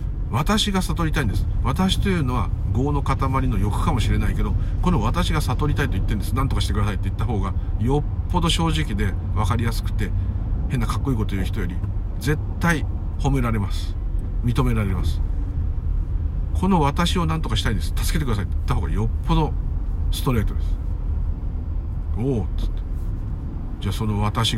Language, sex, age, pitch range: Japanese, male, 50-69, 80-105 Hz